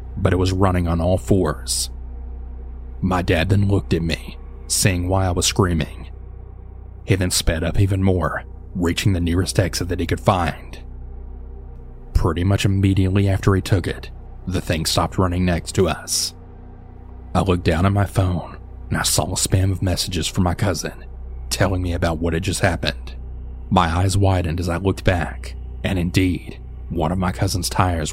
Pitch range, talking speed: 75-95 Hz, 175 wpm